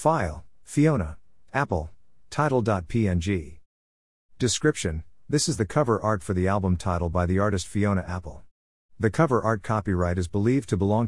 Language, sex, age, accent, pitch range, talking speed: English, male, 50-69, American, 85-115 Hz, 145 wpm